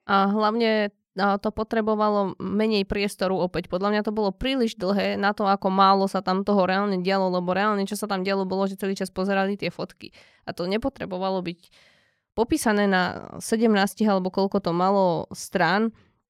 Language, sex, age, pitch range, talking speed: Slovak, female, 20-39, 185-215 Hz, 175 wpm